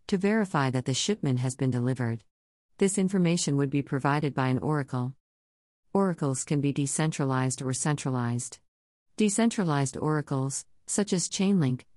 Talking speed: 135 wpm